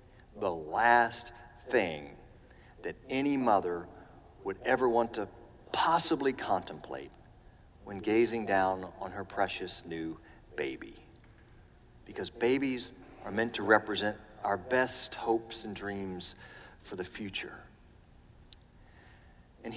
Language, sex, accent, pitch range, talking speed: English, male, American, 100-120 Hz, 105 wpm